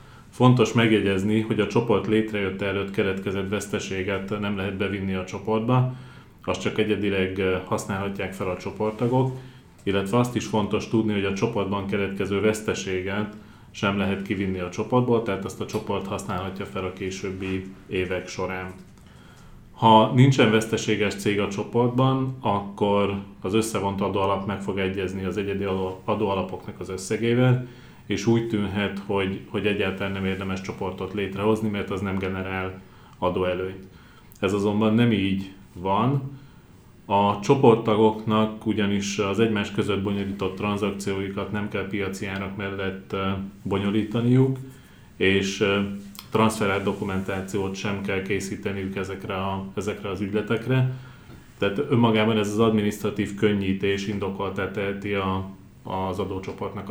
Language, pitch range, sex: Hungarian, 95-110 Hz, male